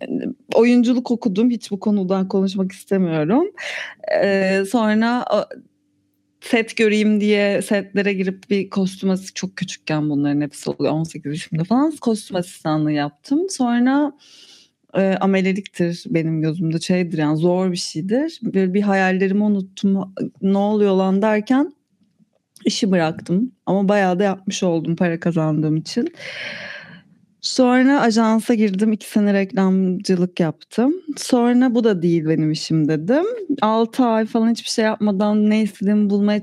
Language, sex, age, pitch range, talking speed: Turkish, female, 30-49, 185-225 Hz, 130 wpm